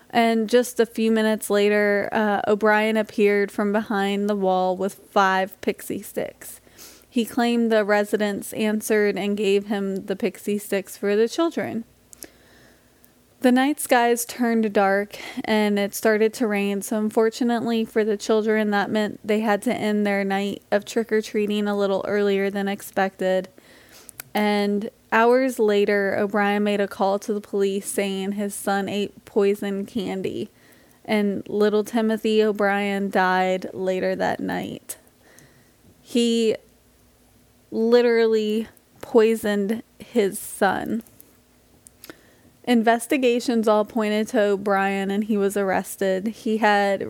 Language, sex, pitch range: English, female, 200-230 Hz